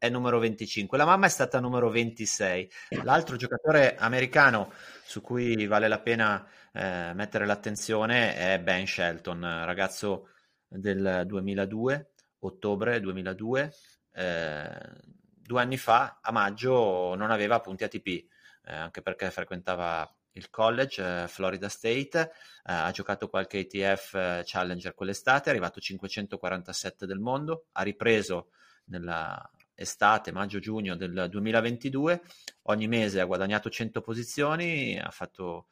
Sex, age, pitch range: male, 30-49, 95-115 Hz